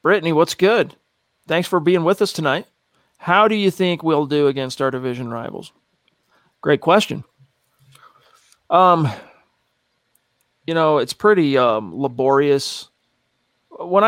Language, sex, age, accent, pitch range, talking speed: English, male, 40-59, American, 140-180 Hz, 125 wpm